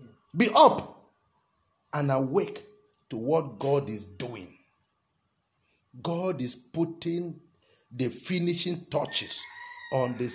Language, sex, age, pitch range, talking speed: English, male, 50-69, 140-210 Hz, 100 wpm